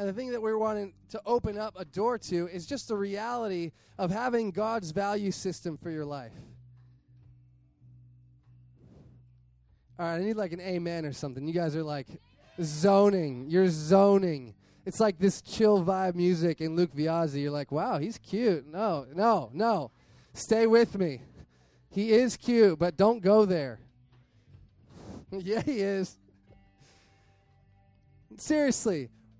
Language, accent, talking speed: English, American, 145 wpm